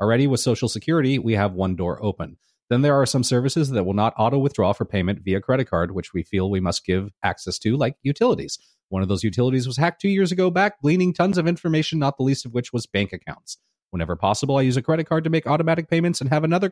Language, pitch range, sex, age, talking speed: English, 100-145 Hz, male, 30-49, 250 wpm